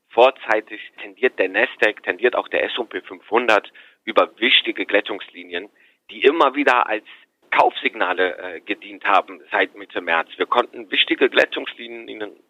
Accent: German